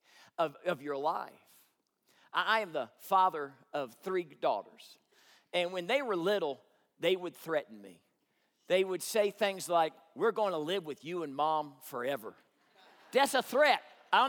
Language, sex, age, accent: English, male, 40-59, American